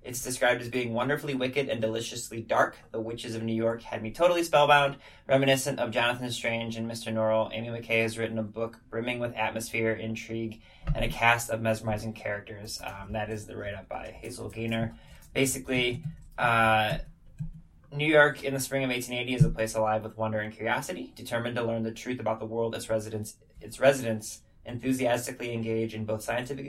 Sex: male